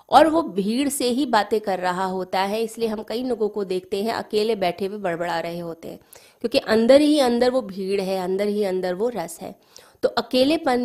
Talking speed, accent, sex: 215 wpm, native, female